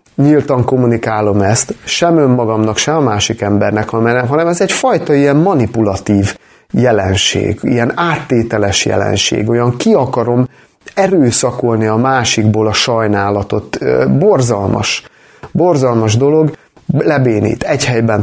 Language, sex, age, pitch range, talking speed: Hungarian, male, 30-49, 110-140 Hz, 110 wpm